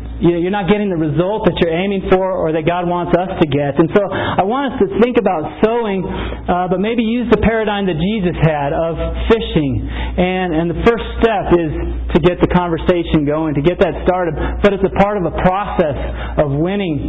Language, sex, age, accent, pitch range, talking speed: English, male, 40-59, American, 160-200 Hz, 210 wpm